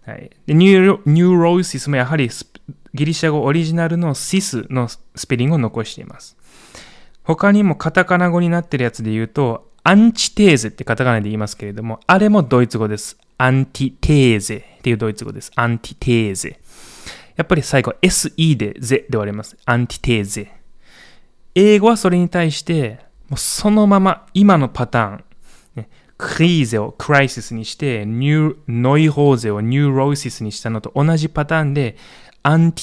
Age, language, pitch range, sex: 20-39, Japanese, 115-165 Hz, male